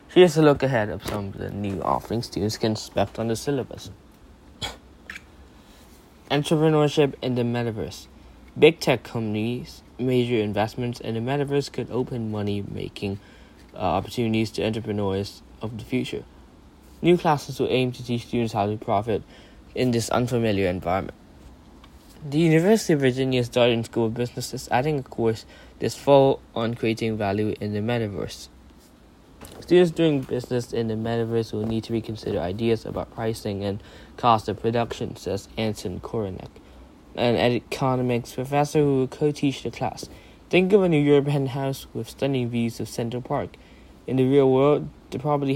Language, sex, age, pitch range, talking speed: English, male, 20-39, 105-130 Hz, 155 wpm